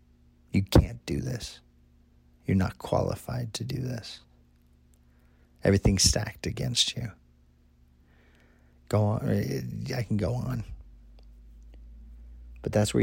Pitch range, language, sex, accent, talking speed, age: 80-115 Hz, English, male, American, 105 wpm, 40-59